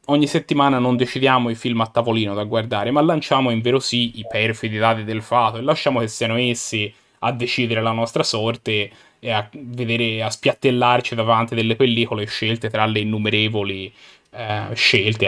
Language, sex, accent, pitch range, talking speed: Italian, male, native, 115-140 Hz, 175 wpm